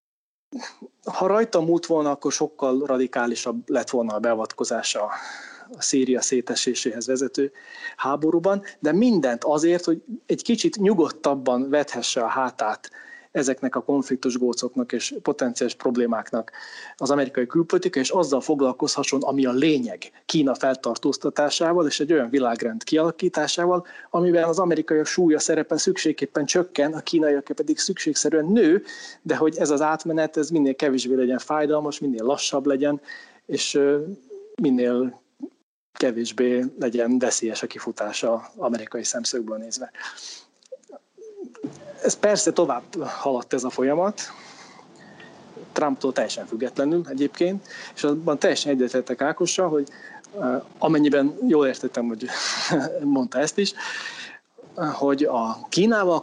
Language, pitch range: Hungarian, 130-175 Hz